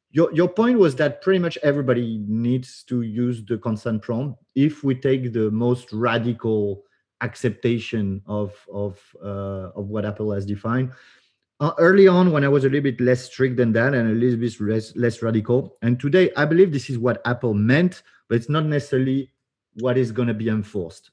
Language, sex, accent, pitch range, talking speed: English, male, French, 115-145 Hz, 195 wpm